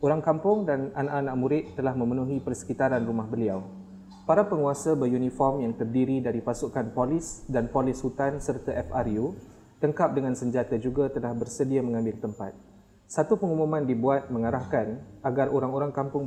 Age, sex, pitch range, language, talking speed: 20-39, male, 120-150 Hz, Malay, 140 wpm